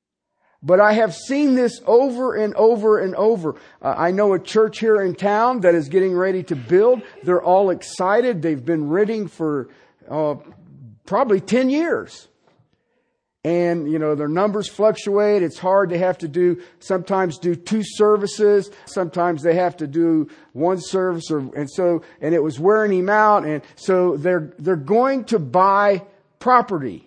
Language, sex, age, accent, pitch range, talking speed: English, male, 50-69, American, 150-195 Hz, 165 wpm